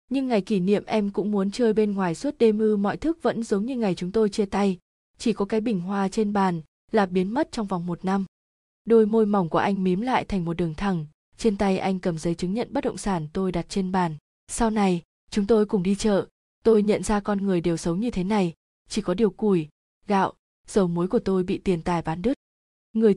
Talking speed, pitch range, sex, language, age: 245 wpm, 185-225 Hz, female, Vietnamese, 20-39